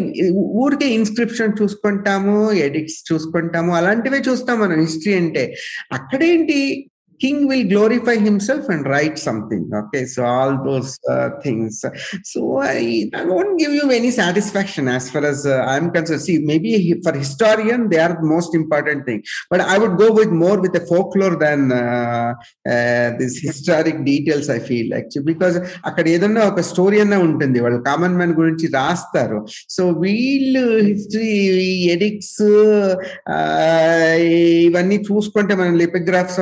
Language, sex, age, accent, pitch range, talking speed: Telugu, male, 50-69, native, 155-210 Hz, 145 wpm